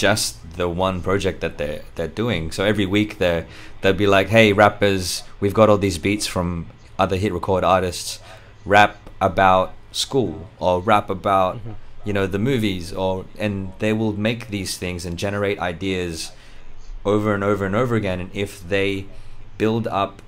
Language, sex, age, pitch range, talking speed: English, male, 20-39, 90-110 Hz, 170 wpm